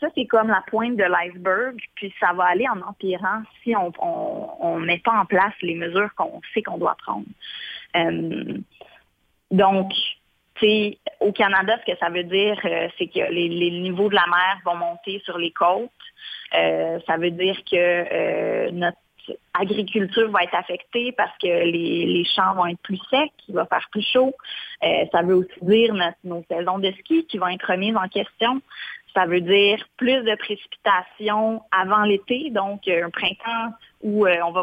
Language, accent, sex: French, Canadian, female